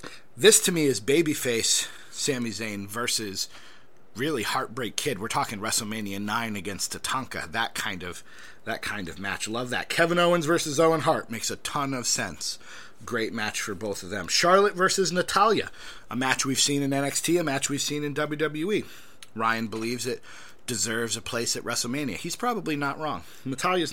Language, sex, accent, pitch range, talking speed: English, male, American, 115-155 Hz, 175 wpm